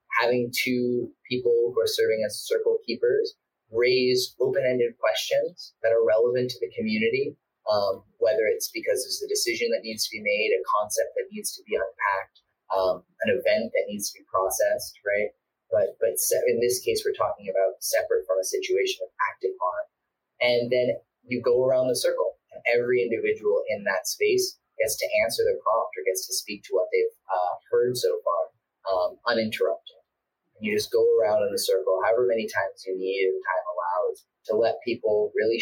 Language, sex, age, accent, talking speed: English, male, 30-49, American, 190 wpm